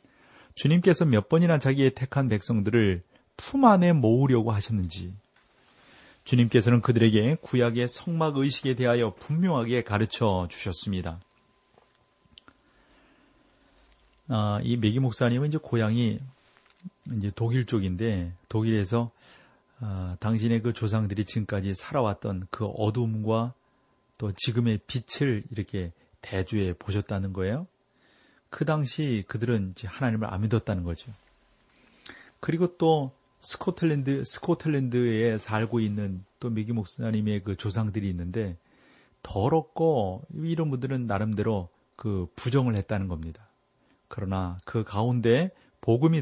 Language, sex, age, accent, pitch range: Korean, male, 30-49, native, 105-130 Hz